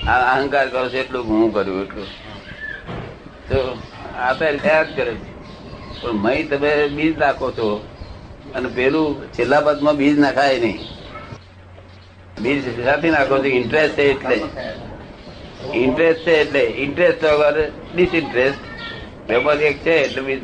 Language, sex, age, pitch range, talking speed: Gujarati, male, 60-79, 120-150 Hz, 40 wpm